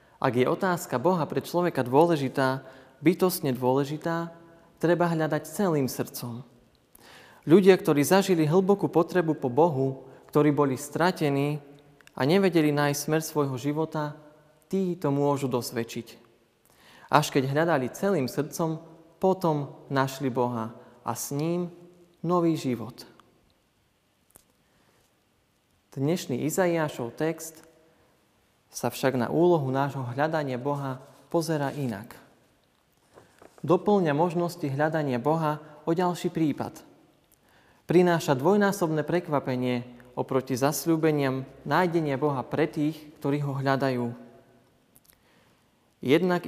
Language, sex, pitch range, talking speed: Slovak, male, 130-165 Hz, 100 wpm